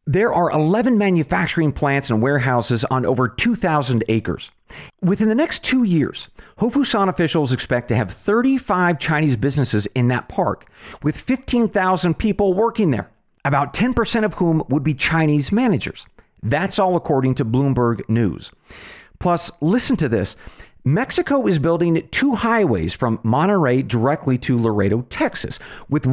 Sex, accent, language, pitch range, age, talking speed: male, American, English, 125-195 Hz, 40-59, 140 wpm